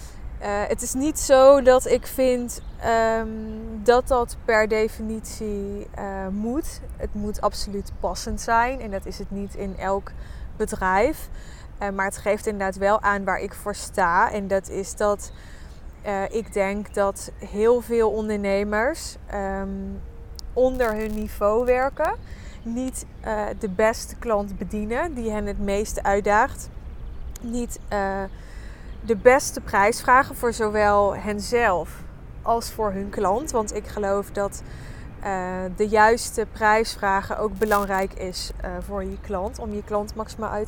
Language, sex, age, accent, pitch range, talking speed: Dutch, female, 20-39, Dutch, 205-240 Hz, 145 wpm